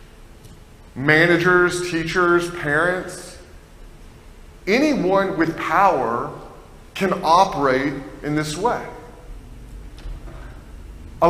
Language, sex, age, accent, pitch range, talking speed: English, male, 30-49, American, 135-190 Hz, 65 wpm